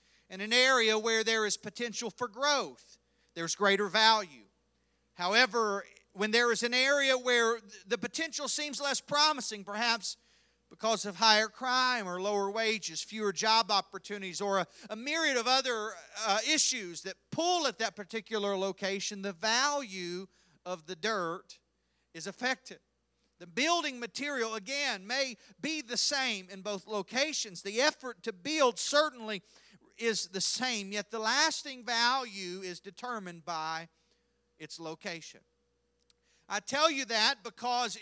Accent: American